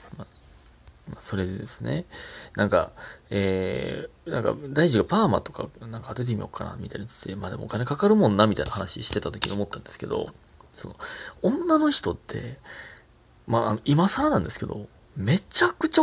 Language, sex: Japanese, male